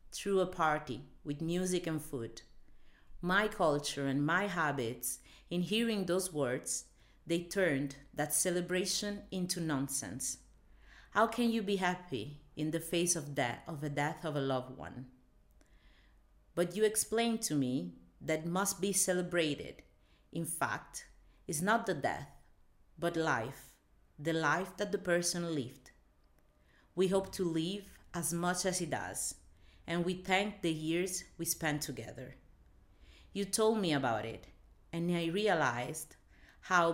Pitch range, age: 130-185 Hz, 50-69